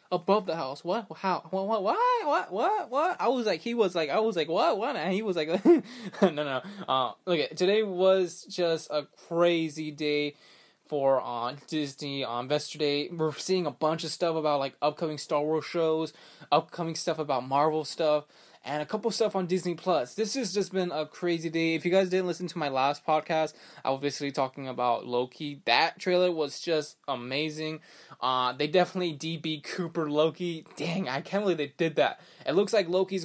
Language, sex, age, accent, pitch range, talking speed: English, male, 20-39, American, 135-175 Hz, 200 wpm